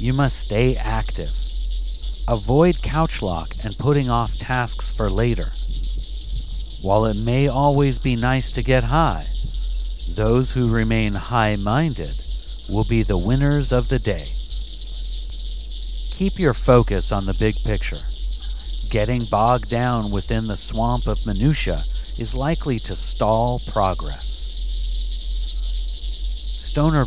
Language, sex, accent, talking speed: English, male, American, 120 wpm